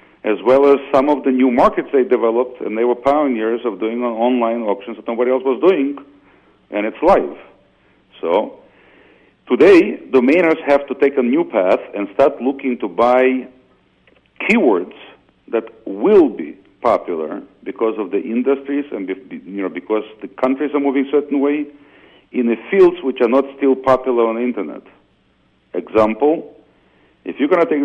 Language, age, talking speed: English, 50-69, 170 wpm